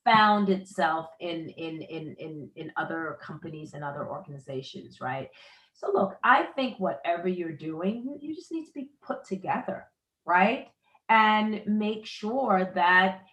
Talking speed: 145 wpm